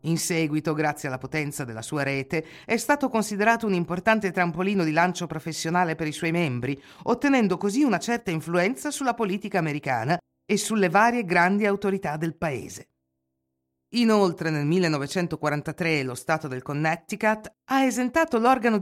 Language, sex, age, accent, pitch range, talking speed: Italian, female, 50-69, native, 155-220 Hz, 145 wpm